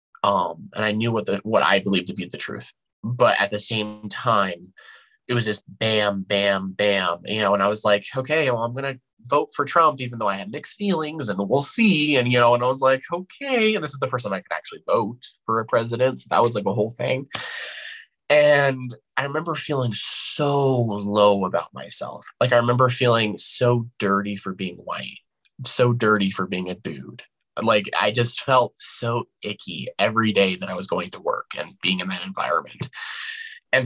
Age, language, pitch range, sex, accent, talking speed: 20-39, English, 105-150 Hz, male, American, 210 wpm